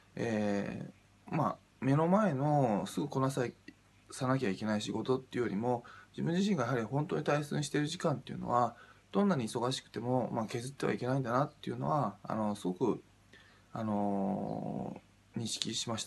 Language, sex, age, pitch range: Japanese, male, 20-39, 105-135 Hz